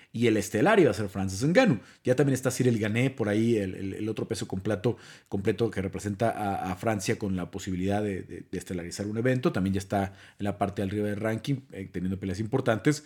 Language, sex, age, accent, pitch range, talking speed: Spanish, male, 30-49, Mexican, 100-130 Hz, 225 wpm